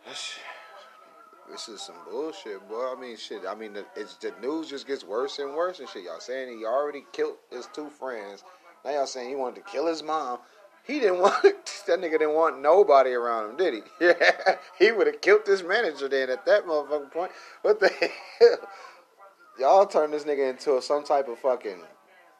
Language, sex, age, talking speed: English, male, 30-49, 195 wpm